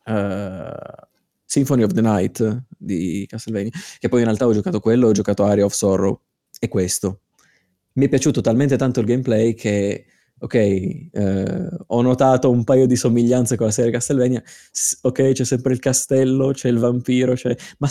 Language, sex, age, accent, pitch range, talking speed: Italian, male, 20-39, native, 100-125 Hz, 160 wpm